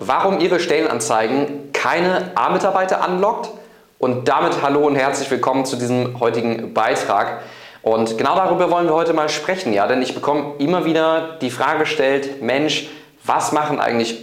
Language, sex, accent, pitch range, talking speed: German, male, German, 125-160 Hz, 155 wpm